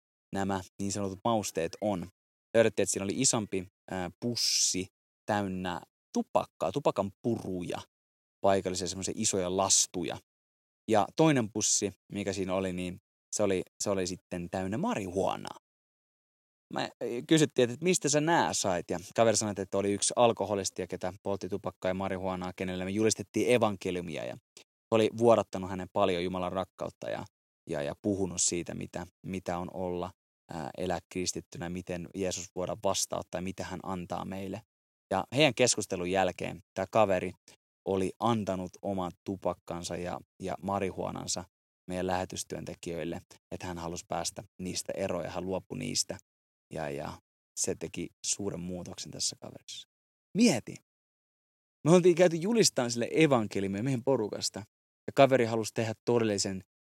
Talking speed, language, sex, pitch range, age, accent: 135 wpm, Finnish, male, 90-110 Hz, 20-39, native